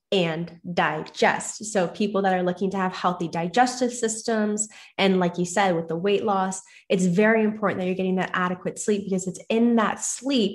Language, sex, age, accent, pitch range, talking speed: English, female, 20-39, American, 185-215 Hz, 195 wpm